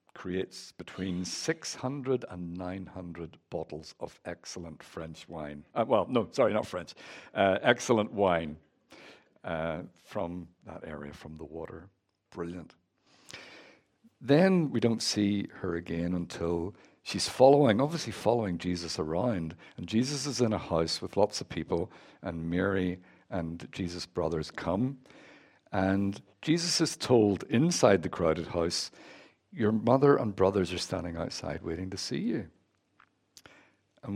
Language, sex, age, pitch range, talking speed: English, male, 60-79, 85-120 Hz, 135 wpm